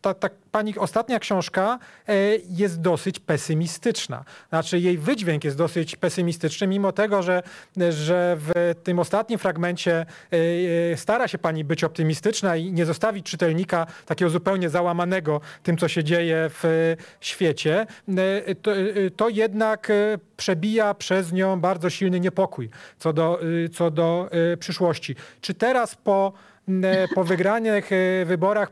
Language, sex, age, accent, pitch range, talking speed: English, male, 30-49, Polish, 175-205 Hz, 120 wpm